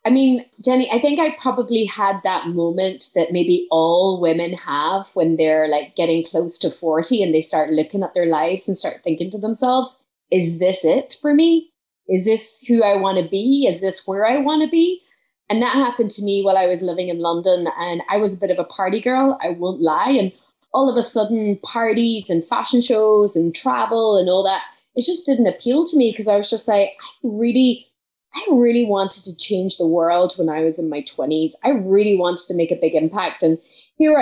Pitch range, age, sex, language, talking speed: 180-240 Hz, 20-39, female, English, 220 wpm